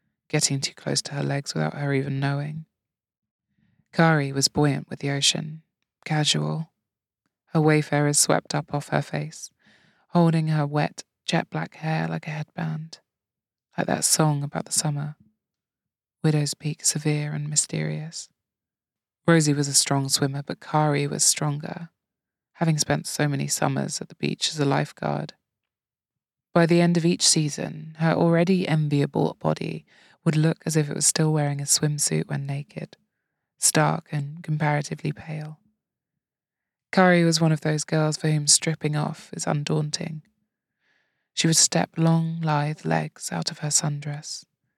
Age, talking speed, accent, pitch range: 20-39, 150 wpm, British, 145-165 Hz